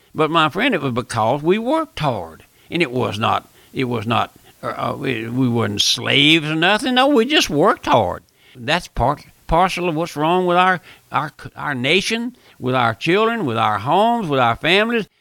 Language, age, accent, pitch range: English, 60-79, American, 135-175 Hz